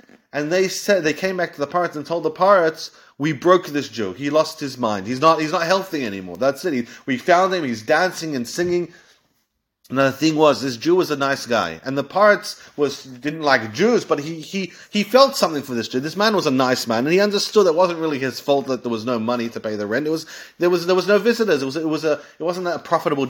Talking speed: 265 wpm